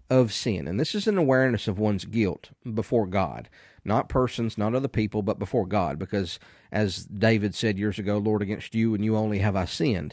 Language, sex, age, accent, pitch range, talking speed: English, male, 40-59, American, 100-130 Hz, 200 wpm